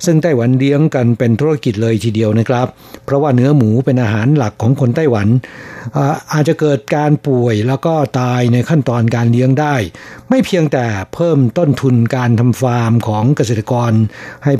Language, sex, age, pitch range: Thai, male, 60-79, 115-140 Hz